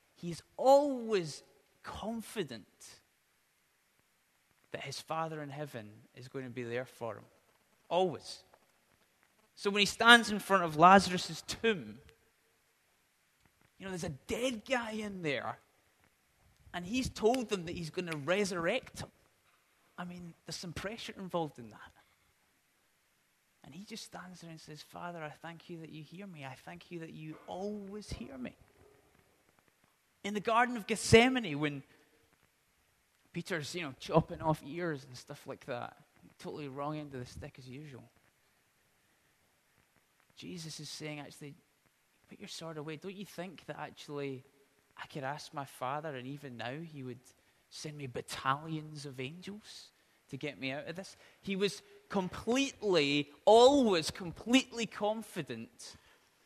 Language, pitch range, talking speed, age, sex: English, 145-200 Hz, 145 wpm, 20-39, male